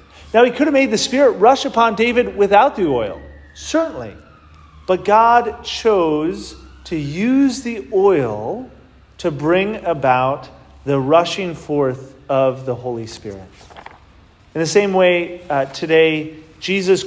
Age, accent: 40-59, American